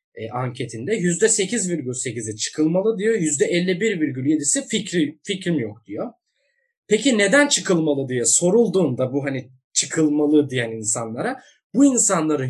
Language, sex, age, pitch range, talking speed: Turkish, male, 20-39, 130-195 Hz, 130 wpm